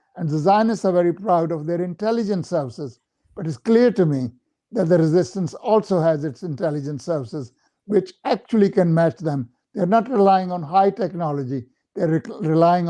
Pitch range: 160-200 Hz